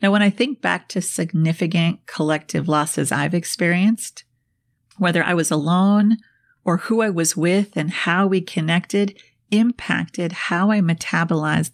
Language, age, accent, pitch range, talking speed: English, 40-59, American, 165-200 Hz, 145 wpm